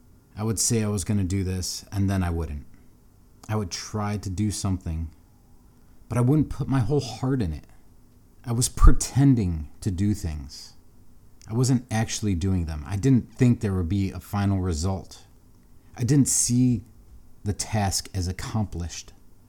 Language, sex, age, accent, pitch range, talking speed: English, male, 30-49, American, 95-125 Hz, 170 wpm